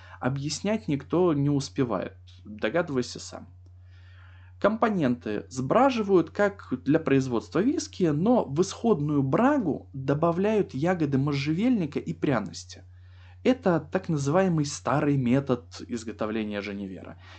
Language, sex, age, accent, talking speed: Russian, male, 20-39, native, 95 wpm